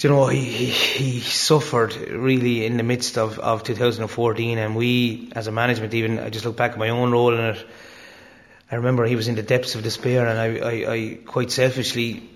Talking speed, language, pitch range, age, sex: 210 wpm, English, 115-125 Hz, 30-49, male